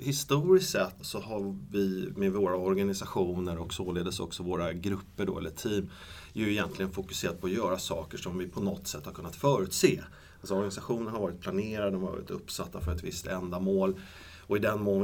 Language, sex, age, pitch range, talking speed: Swedish, male, 30-49, 95-155 Hz, 190 wpm